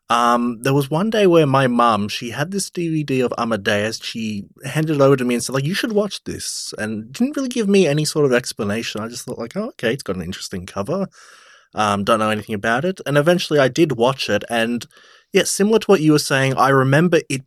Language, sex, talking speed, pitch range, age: English, male, 240 wpm, 115-160 Hz, 20-39